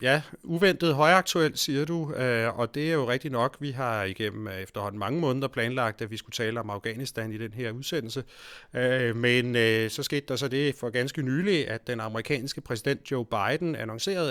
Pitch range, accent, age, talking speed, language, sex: 115-150 Hz, native, 30-49, 185 wpm, Danish, male